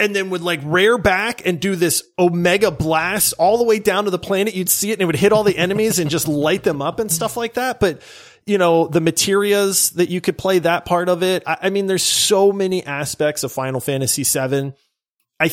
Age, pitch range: 30-49, 145-190 Hz